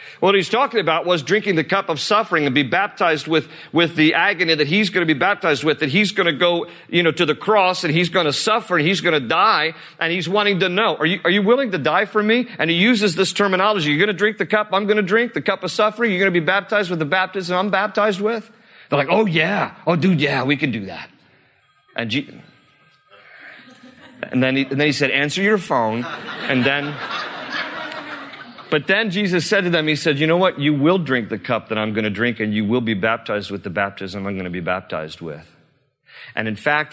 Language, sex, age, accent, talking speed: English, male, 40-59, American, 245 wpm